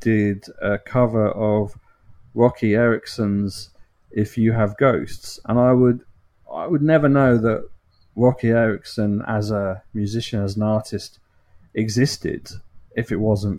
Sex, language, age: male, English, 40-59